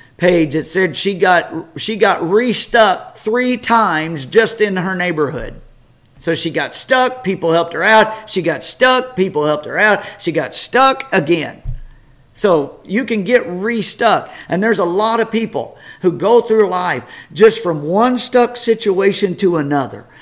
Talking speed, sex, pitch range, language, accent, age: 165 wpm, male, 170-230 Hz, English, American, 50-69